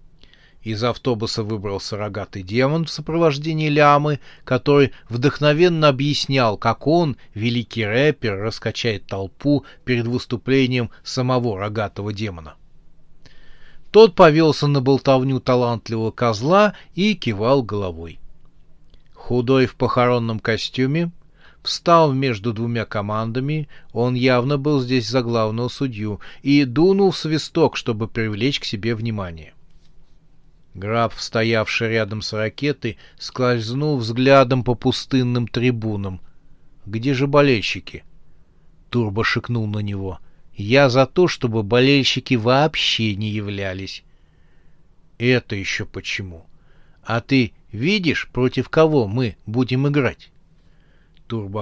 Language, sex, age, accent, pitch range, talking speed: Russian, male, 30-49, native, 110-140 Hz, 105 wpm